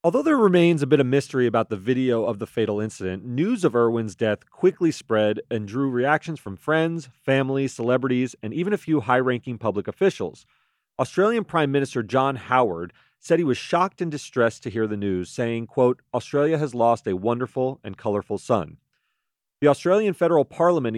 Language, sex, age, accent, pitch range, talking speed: English, male, 40-59, American, 110-150 Hz, 185 wpm